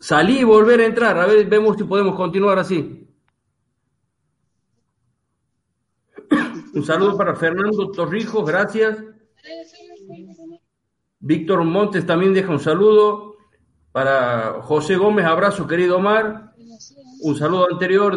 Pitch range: 135-200 Hz